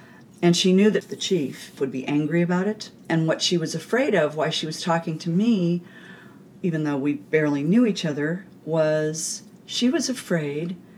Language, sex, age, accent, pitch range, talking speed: English, female, 40-59, American, 155-195 Hz, 185 wpm